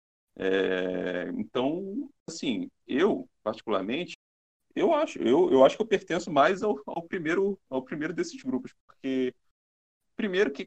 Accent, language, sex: Brazilian, Portuguese, male